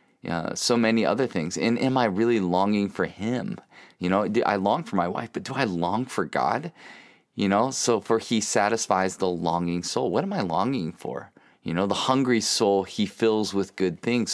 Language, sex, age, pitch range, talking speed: English, male, 30-49, 100-140 Hz, 210 wpm